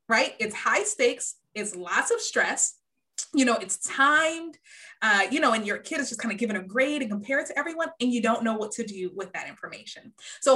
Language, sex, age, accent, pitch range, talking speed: English, female, 20-39, American, 205-285 Hz, 225 wpm